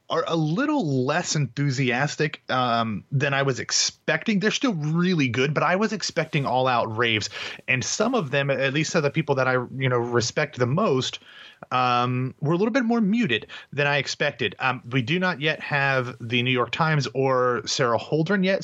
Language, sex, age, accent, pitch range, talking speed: English, male, 30-49, American, 115-155 Hz, 195 wpm